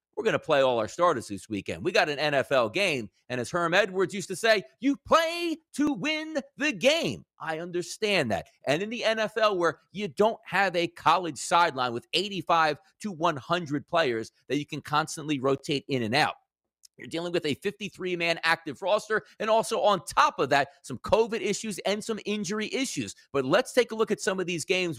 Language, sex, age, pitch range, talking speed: English, male, 30-49, 170-235 Hz, 200 wpm